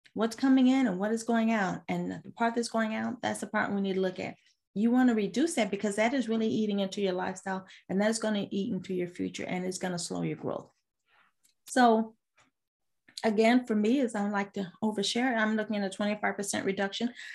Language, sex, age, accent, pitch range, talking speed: English, female, 30-49, American, 190-225 Hz, 230 wpm